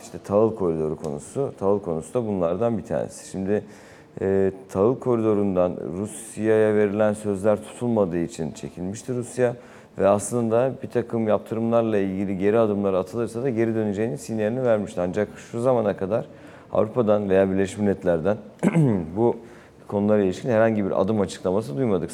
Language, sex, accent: Turkish, male, native